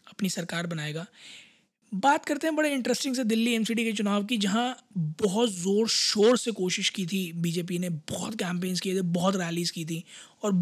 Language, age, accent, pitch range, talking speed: Hindi, 20-39, native, 180-220 Hz, 185 wpm